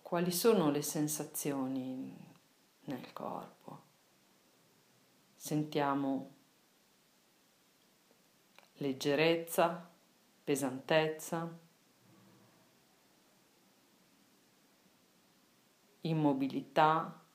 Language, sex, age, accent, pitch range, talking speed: Italian, female, 40-59, native, 145-190 Hz, 35 wpm